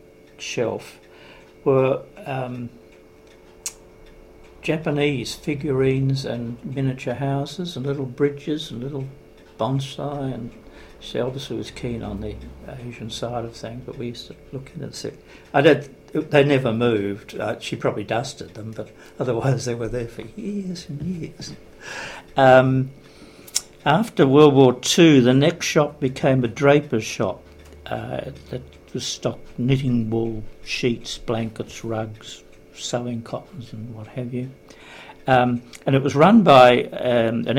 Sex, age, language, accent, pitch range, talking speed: male, 60-79, English, British, 110-135 Hz, 135 wpm